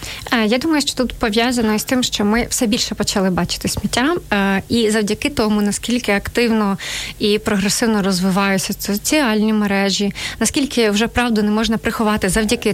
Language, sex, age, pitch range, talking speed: Ukrainian, female, 30-49, 205-235 Hz, 145 wpm